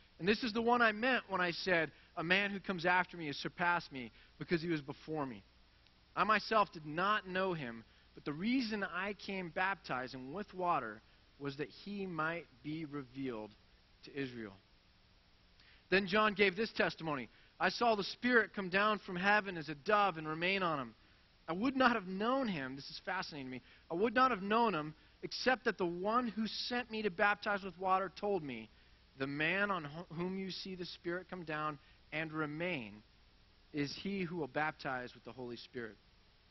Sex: male